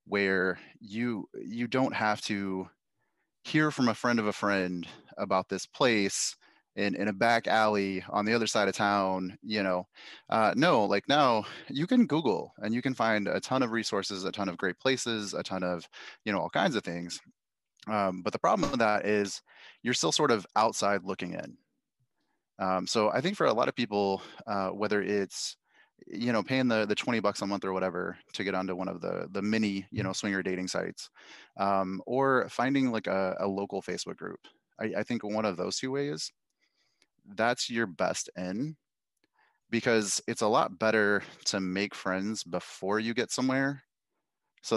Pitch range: 95-115 Hz